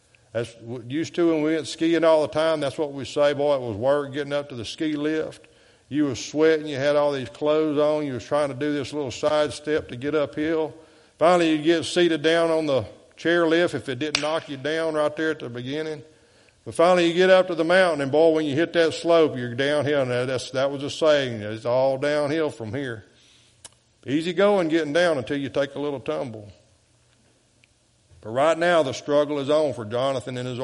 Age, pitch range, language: 60-79, 115-150 Hz, English